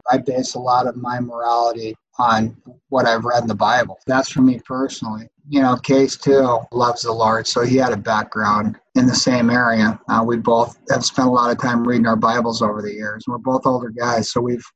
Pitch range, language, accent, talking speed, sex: 120-145 Hz, English, American, 225 wpm, male